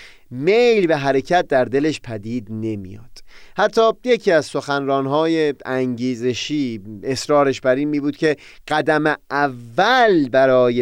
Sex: male